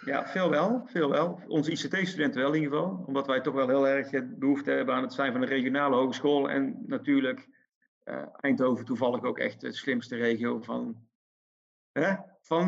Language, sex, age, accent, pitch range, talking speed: English, male, 40-59, Dutch, 135-190 Hz, 175 wpm